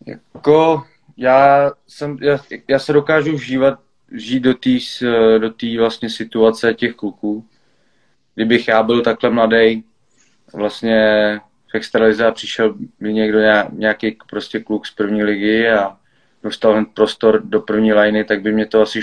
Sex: male